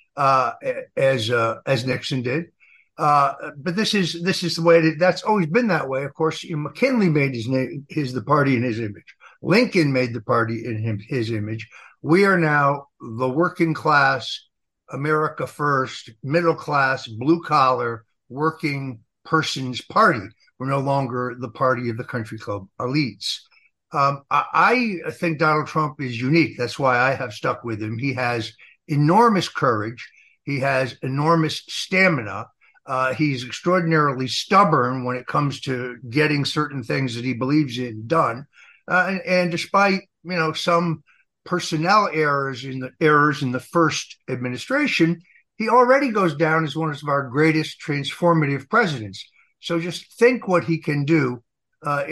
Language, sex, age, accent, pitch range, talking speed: English, male, 60-79, American, 130-165 Hz, 165 wpm